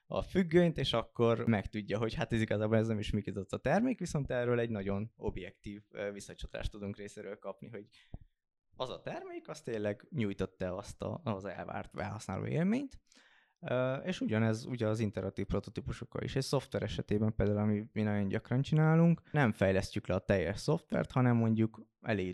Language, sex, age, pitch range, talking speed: Hungarian, male, 20-39, 100-125 Hz, 175 wpm